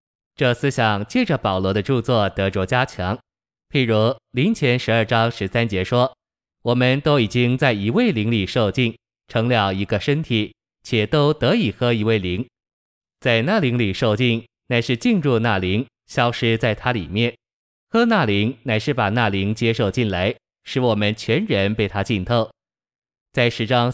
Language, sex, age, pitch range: Chinese, male, 20-39, 105-125 Hz